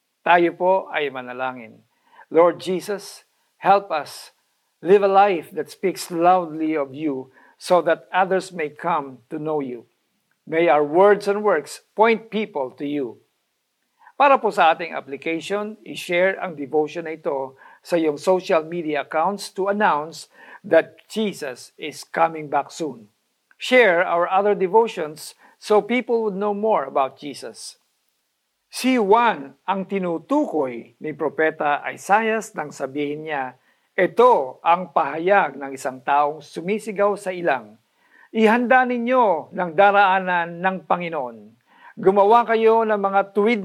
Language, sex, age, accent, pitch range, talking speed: Filipino, male, 50-69, native, 150-205 Hz, 135 wpm